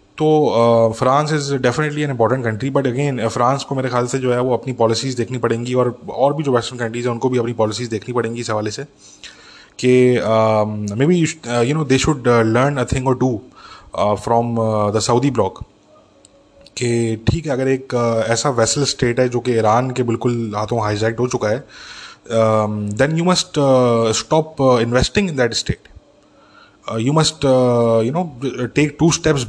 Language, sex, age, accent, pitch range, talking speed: English, male, 20-39, Indian, 115-135 Hz, 160 wpm